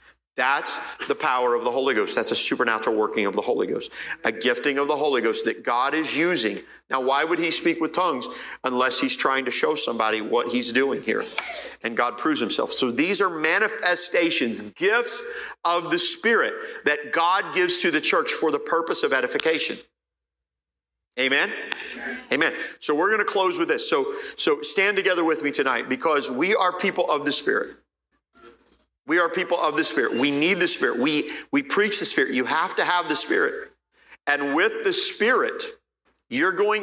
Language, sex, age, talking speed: English, male, 40-59, 185 wpm